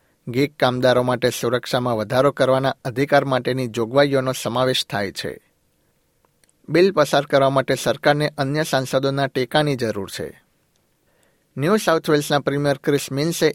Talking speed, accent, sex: 120 wpm, native, male